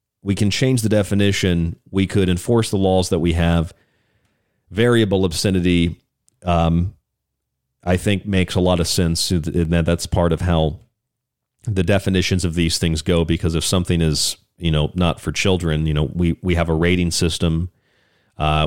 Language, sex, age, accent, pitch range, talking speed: English, male, 40-59, American, 85-105 Hz, 165 wpm